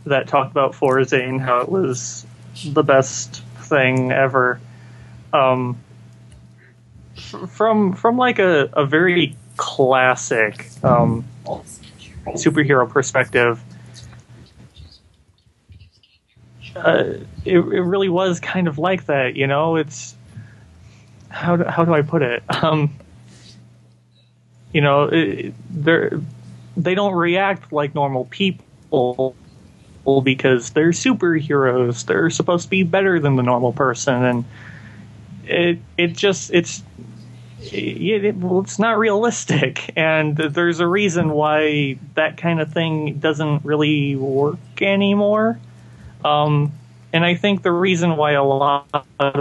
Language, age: English, 30-49